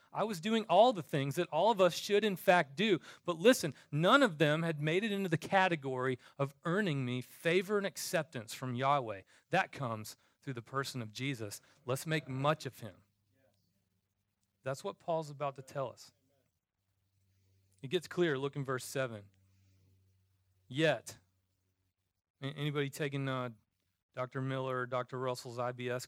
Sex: male